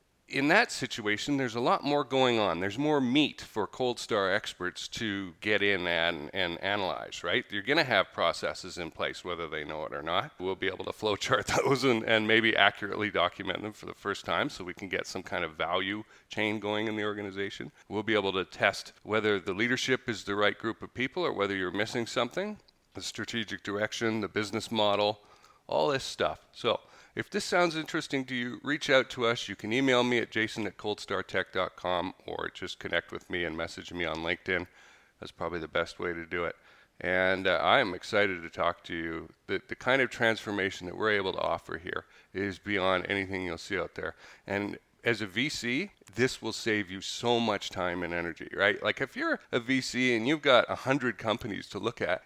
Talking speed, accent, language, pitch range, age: 210 wpm, American, English, 95-125 Hz, 40-59